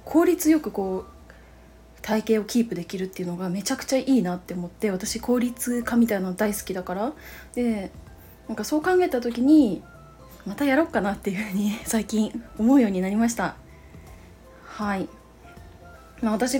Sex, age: female, 20-39